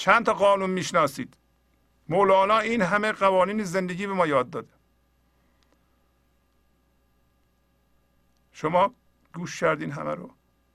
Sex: male